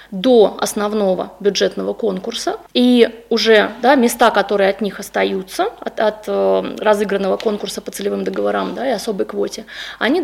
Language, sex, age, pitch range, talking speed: Russian, female, 20-39, 205-245 Hz, 135 wpm